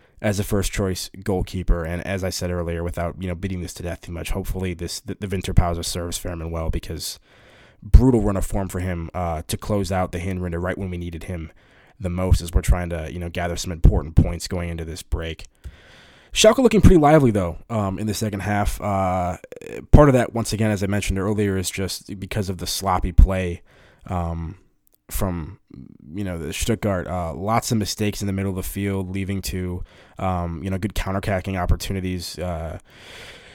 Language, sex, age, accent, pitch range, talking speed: English, male, 20-39, American, 90-105 Hz, 200 wpm